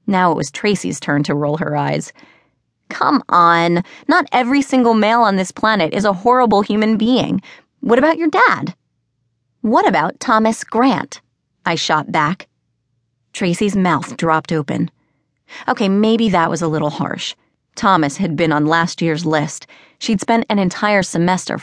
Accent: American